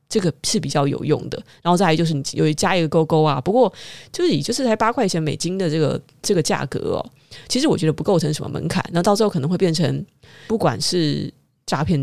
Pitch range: 145-185 Hz